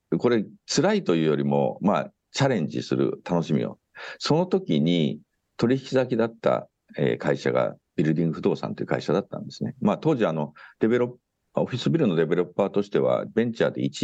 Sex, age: male, 60-79